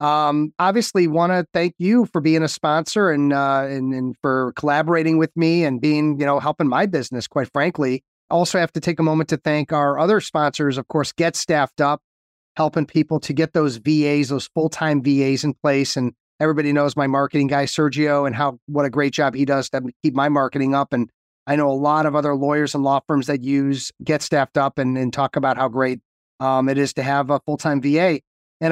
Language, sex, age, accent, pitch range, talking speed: English, male, 30-49, American, 135-155 Hz, 220 wpm